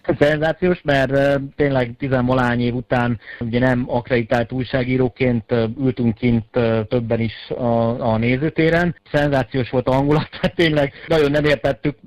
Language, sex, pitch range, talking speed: Hungarian, male, 120-140 Hz, 130 wpm